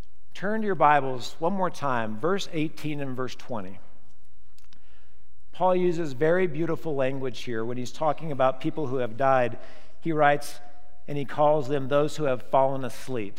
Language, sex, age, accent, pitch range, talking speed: English, male, 50-69, American, 125-155 Hz, 165 wpm